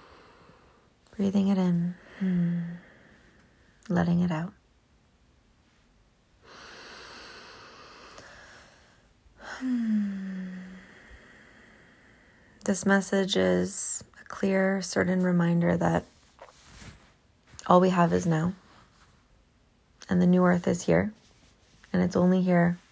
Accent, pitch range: American, 160-185 Hz